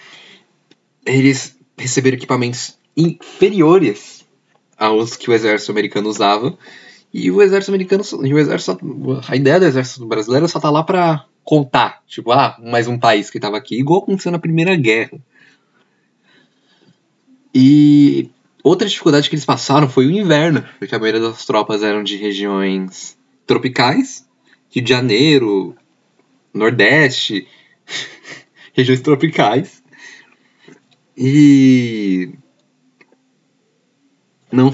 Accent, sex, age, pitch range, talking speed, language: Brazilian, male, 20-39, 115-165 Hz, 110 wpm, Portuguese